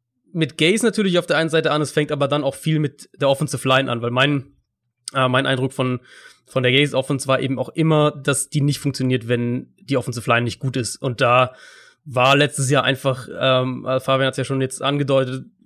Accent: German